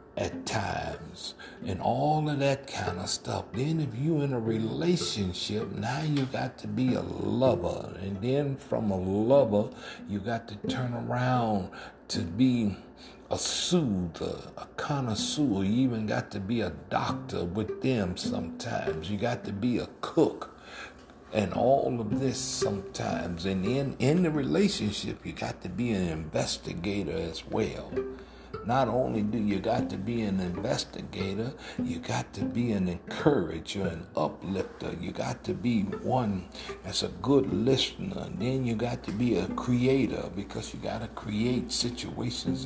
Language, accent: English, American